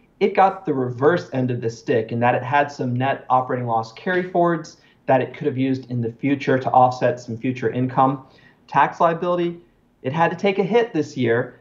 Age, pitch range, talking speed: 40-59, 120-150 Hz, 210 wpm